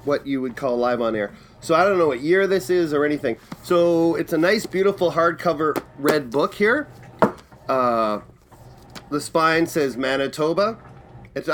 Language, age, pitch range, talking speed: English, 30-49, 130-185 Hz, 165 wpm